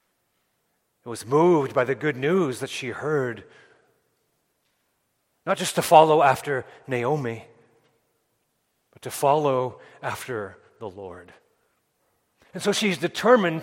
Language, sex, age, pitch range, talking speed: English, male, 40-59, 135-195 Hz, 110 wpm